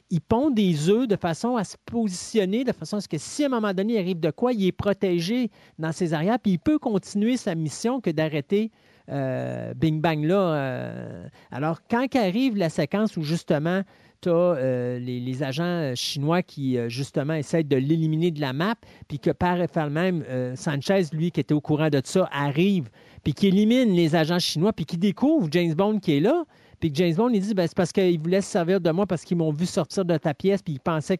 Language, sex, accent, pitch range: French, male, Canadian, 155-205 Hz